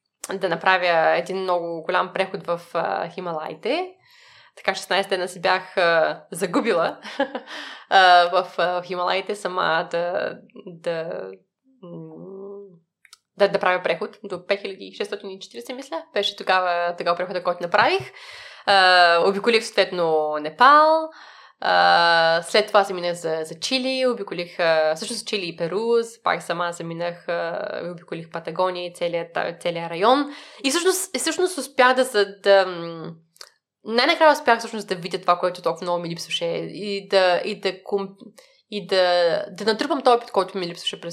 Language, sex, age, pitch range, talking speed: Bulgarian, female, 20-39, 175-225 Hz, 135 wpm